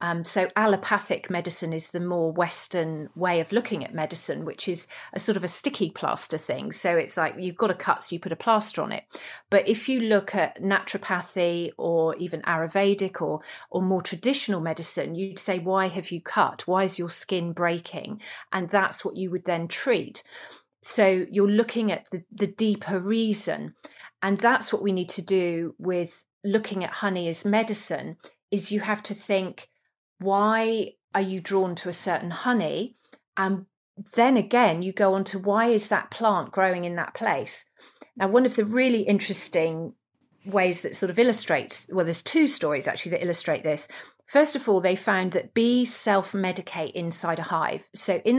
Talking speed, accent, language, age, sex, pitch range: 185 wpm, British, English, 40-59, female, 175-210 Hz